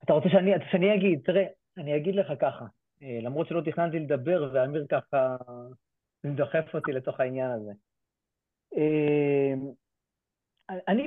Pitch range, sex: 135-200 Hz, male